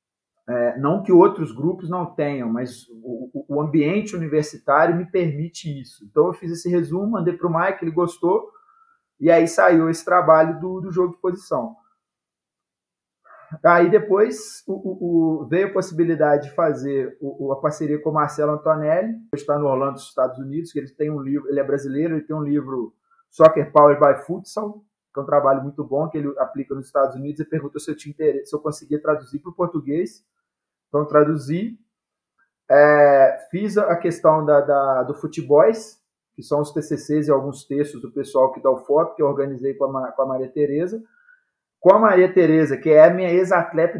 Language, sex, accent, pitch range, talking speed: Portuguese, male, Brazilian, 145-185 Hz, 190 wpm